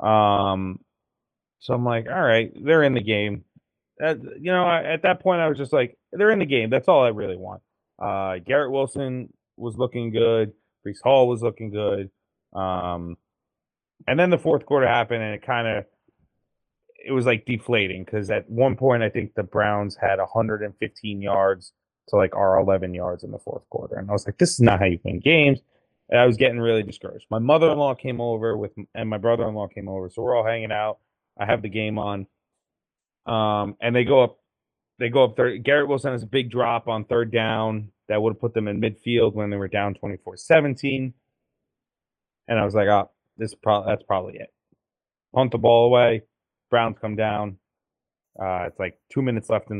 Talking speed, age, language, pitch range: 205 wpm, 30-49, English, 100-125 Hz